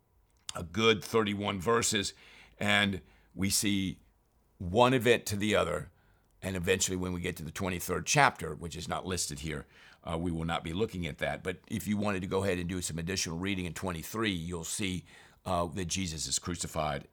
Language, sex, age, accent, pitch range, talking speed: English, male, 50-69, American, 80-105 Hz, 195 wpm